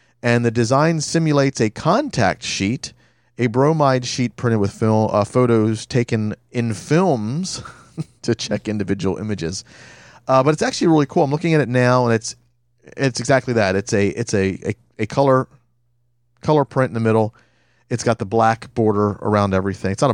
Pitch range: 105-135 Hz